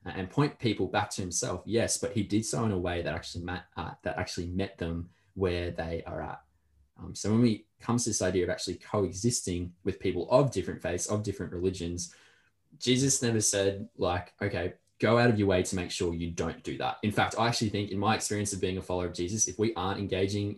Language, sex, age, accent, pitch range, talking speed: English, male, 20-39, Australian, 90-110 Hz, 235 wpm